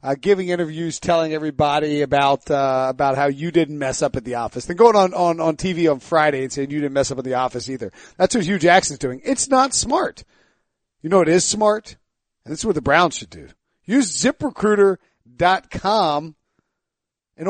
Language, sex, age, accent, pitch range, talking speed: English, male, 40-59, American, 150-205 Hz, 200 wpm